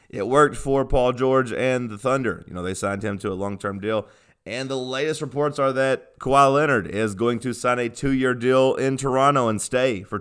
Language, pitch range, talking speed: English, 105-140 Hz, 215 wpm